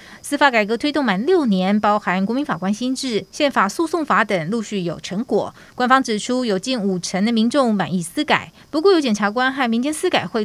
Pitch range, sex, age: 190-255 Hz, female, 20-39